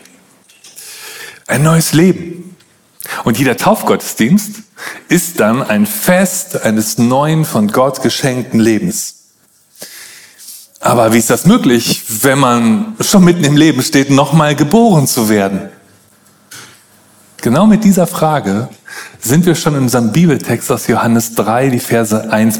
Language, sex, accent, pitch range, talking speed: German, male, German, 115-175 Hz, 125 wpm